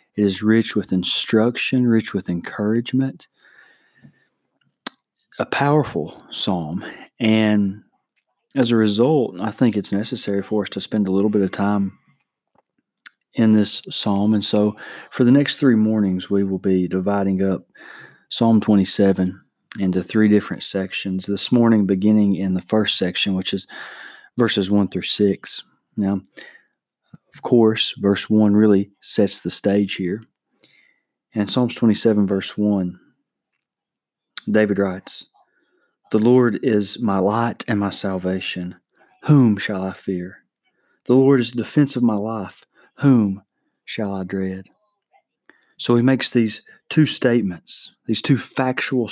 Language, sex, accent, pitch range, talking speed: English, male, American, 95-115 Hz, 135 wpm